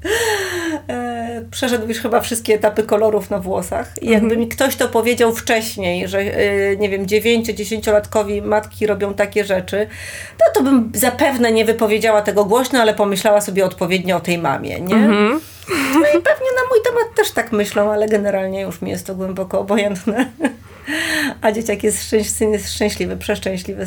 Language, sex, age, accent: Polish, female, 40-59, native